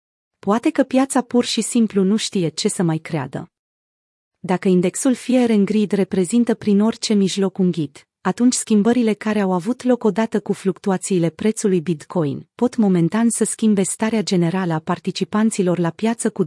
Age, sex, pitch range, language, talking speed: 30-49, female, 180-225 Hz, Romanian, 160 wpm